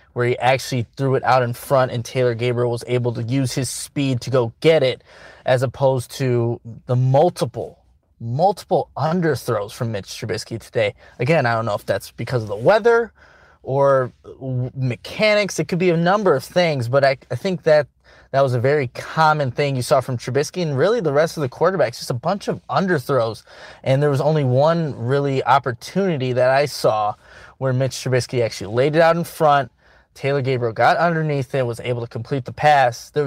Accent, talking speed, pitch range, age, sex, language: American, 195 wpm, 120-145 Hz, 20-39, male, English